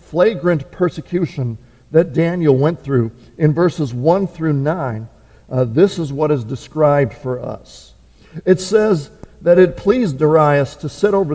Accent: American